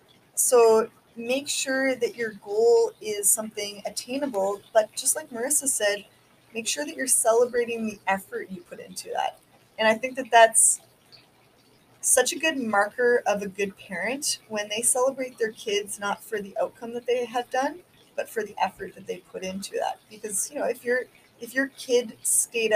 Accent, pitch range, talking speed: American, 200-245 Hz, 180 wpm